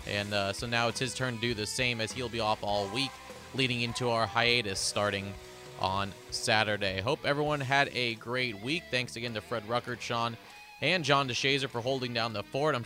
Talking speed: 210 wpm